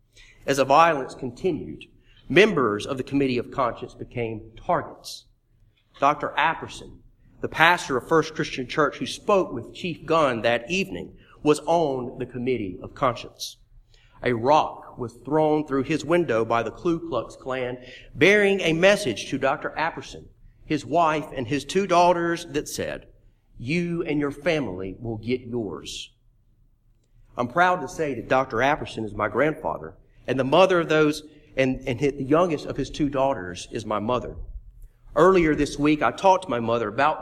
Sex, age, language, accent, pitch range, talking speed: male, 40-59, English, American, 115-155 Hz, 165 wpm